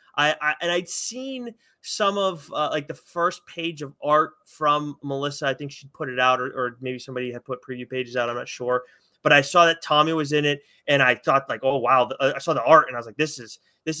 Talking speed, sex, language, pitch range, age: 255 wpm, male, English, 135-170 Hz, 20-39